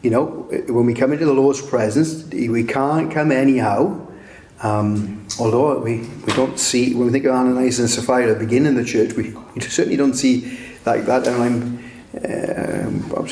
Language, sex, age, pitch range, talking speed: English, male, 30-49, 125-165 Hz, 170 wpm